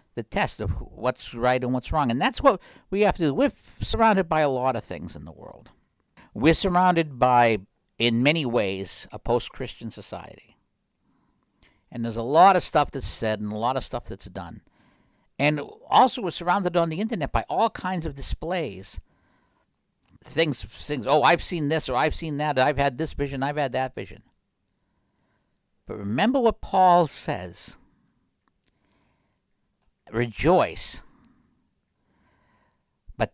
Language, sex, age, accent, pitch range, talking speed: English, male, 60-79, American, 110-170 Hz, 155 wpm